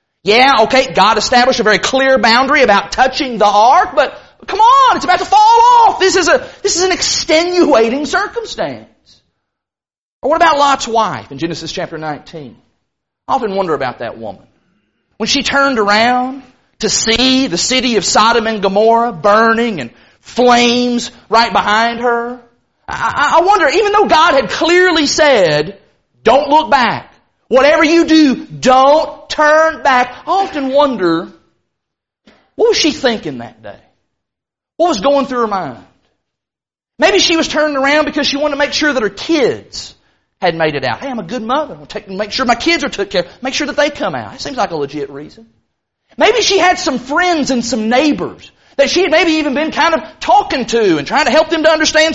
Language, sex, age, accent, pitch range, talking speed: English, male, 30-49, American, 230-320 Hz, 190 wpm